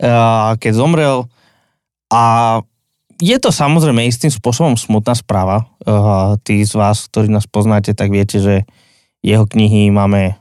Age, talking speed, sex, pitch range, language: 20-39, 140 wpm, male, 105-120 Hz, Slovak